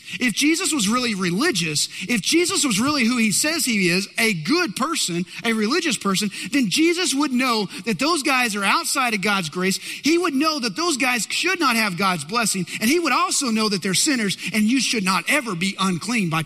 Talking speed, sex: 215 wpm, male